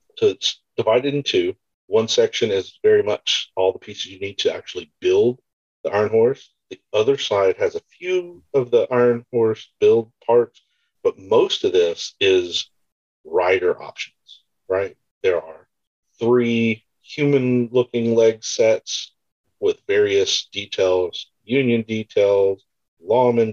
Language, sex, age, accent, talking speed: English, male, 50-69, American, 135 wpm